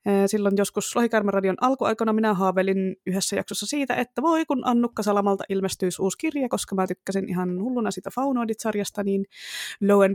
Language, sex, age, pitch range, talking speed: Finnish, female, 20-39, 190-240 Hz, 160 wpm